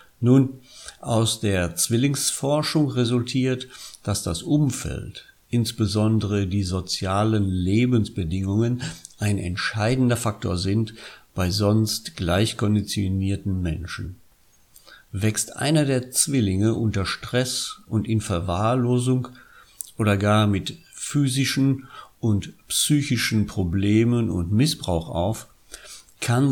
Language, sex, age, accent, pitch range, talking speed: German, male, 50-69, German, 100-125 Hz, 90 wpm